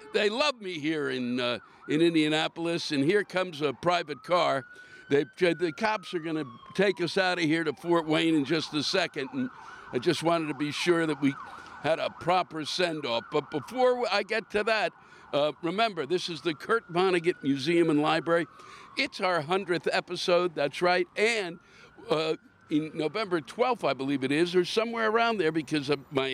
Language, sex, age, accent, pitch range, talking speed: English, male, 60-79, American, 150-210 Hz, 190 wpm